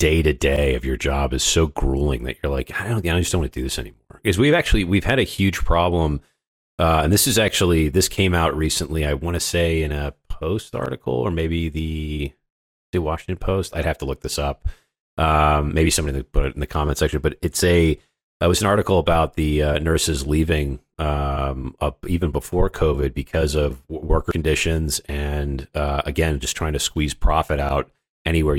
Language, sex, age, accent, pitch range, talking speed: English, male, 30-49, American, 70-85 Hz, 200 wpm